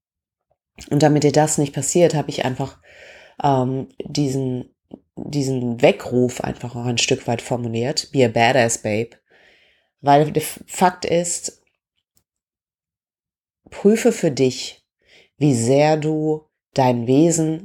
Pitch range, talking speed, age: 125-155 Hz, 120 wpm, 30-49